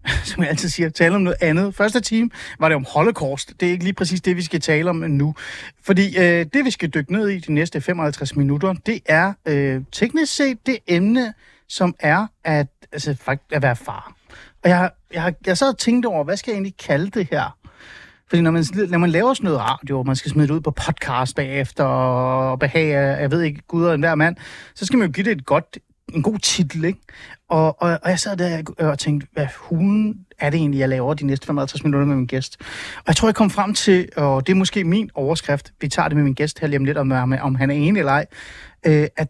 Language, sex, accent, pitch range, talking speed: Danish, male, native, 145-195 Hz, 240 wpm